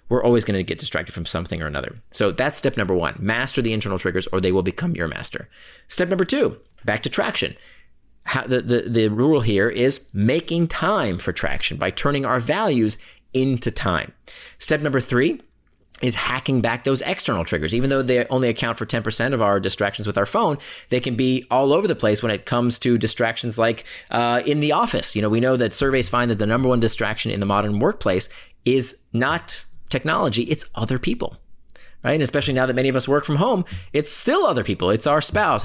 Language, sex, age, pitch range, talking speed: English, male, 30-49, 100-135 Hz, 210 wpm